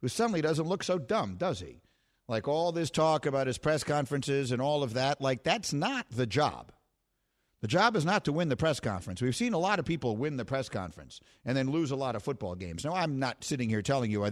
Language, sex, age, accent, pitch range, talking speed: English, male, 50-69, American, 115-150 Hz, 250 wpm